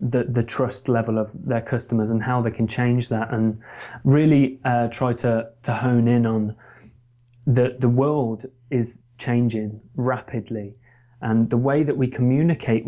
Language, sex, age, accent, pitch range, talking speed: English, male, 20-39, British, 115-130 Hz, 160 wpm